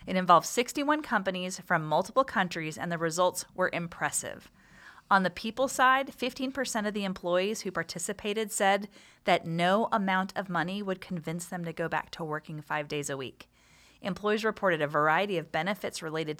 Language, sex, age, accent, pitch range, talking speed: English, female, 30-49, American, 170-225 Hz, 170 wpm